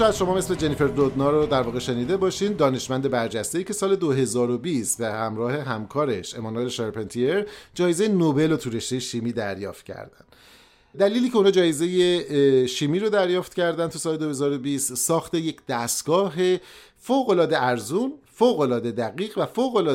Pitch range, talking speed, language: 120-175 Hz, 145 wpm, Persian